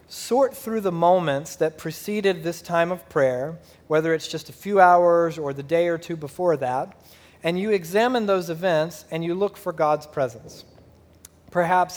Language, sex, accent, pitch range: English, male, American, 145-175 Hz